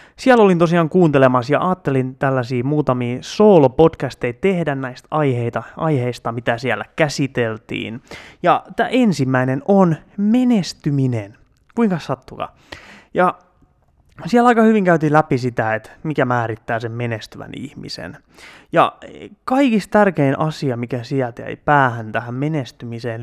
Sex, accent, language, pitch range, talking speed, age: male, native, Finnish, 120-160 Hz, 115 wpm, 20-39